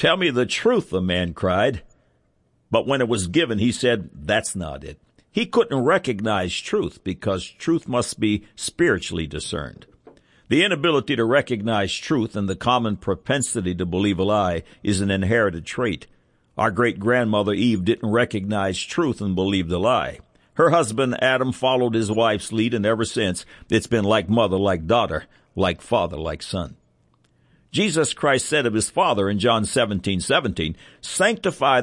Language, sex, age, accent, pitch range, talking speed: English, male, 60-79, American, 95-125 Hz, 160 wpm